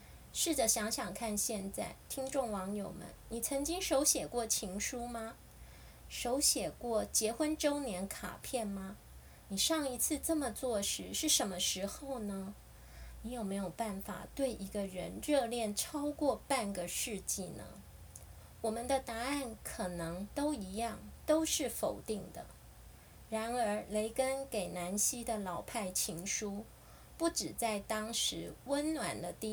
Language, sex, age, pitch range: Chinese, female, 20-39, 195-260 Hz